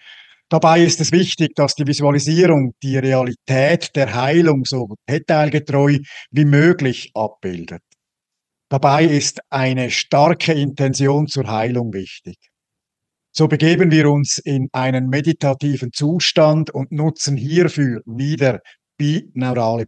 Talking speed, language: 110 wpm, German